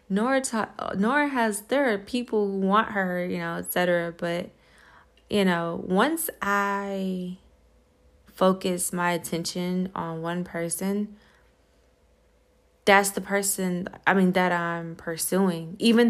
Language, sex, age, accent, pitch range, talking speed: English, female, 20-39, American, 180-235 Hz, 120 wpm